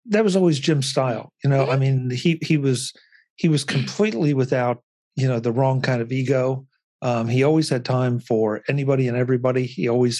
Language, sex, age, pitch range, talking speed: English, male, 50-69, 120-150 Hz, 200 wpm